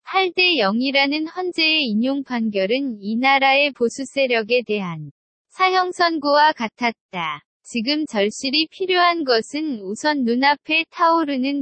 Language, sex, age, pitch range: Korean, female, 20-39, 230-310 Hz